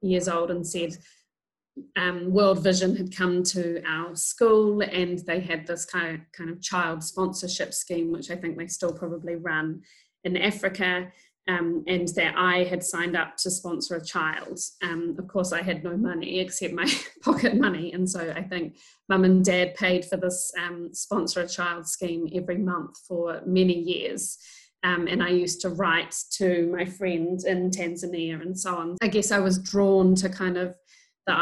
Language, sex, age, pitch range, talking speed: English, female, 20-39, 170-185 Hz, 185 wpm